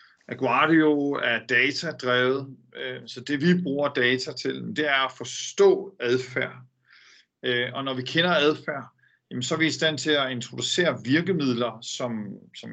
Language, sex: Danish, male